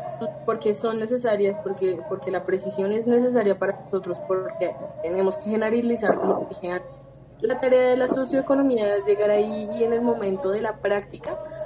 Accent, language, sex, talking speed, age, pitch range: Colombian, English, female, 165 wpm, 20-39, 200-255 Hz